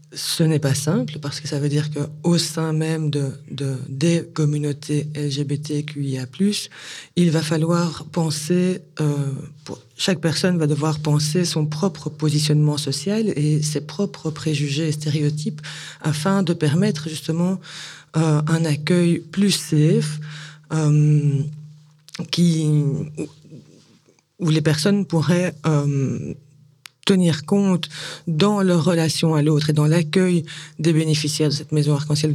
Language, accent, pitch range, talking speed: French, French, 150-165 Hz, 130 wpm